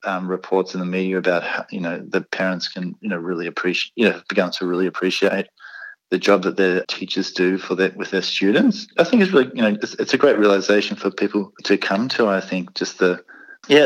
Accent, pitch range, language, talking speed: Australian, 95-125 Hz, English, 240 wpm